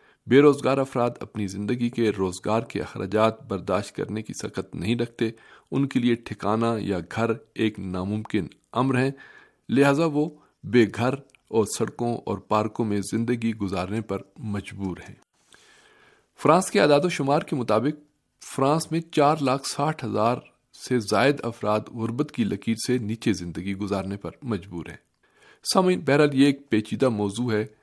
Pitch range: 105-140 Hz